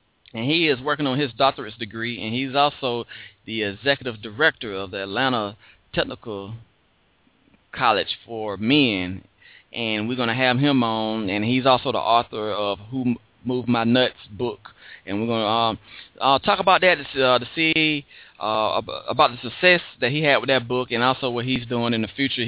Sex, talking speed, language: male, 185 wpm, English